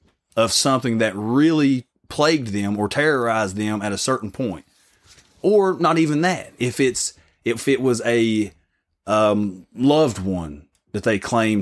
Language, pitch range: English, 95-130 Hz